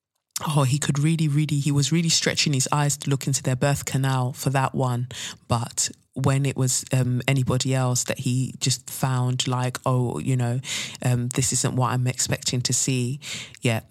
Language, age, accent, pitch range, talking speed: English, 20-39, British, 125-140 Hz, 190 wpm